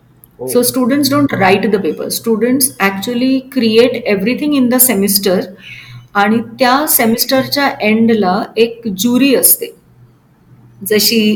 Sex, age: female, 30-49